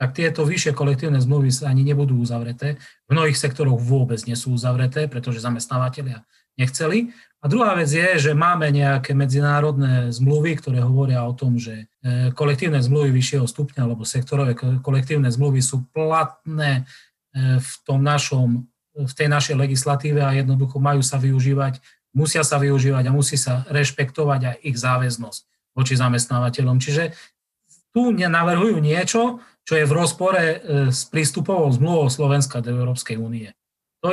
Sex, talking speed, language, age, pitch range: male, 145 wpm, Slovak, 30-49, 130-155 Hz